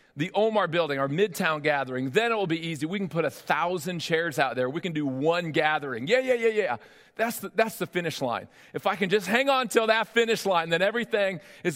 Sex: male